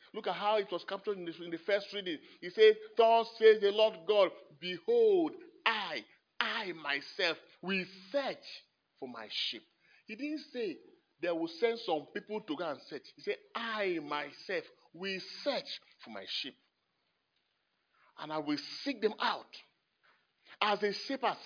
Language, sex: English, male